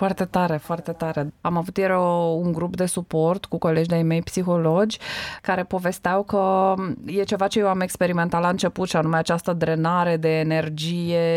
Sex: female